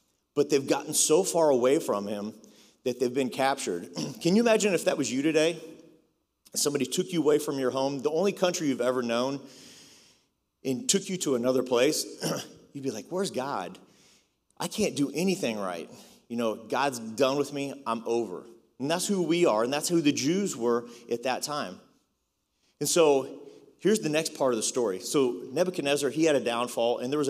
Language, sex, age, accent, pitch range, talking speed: English, male, 30-49, American, 130-170 Hz, 195 wpm